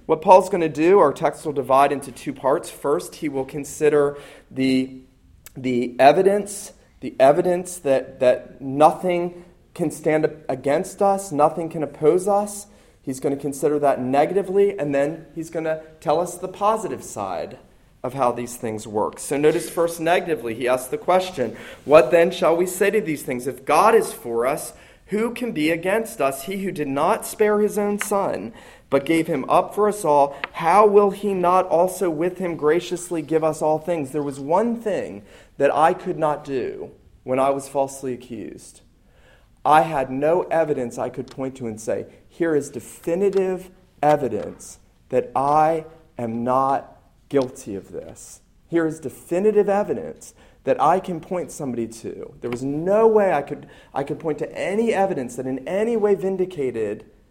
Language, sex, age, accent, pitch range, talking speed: English, male, 30-49, American, 140-185 Hz, 175 wpm